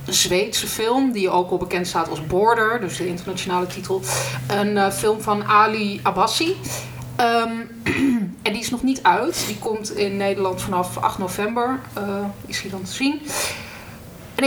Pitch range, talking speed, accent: 180-215 Hz, 170 wpm, Dutch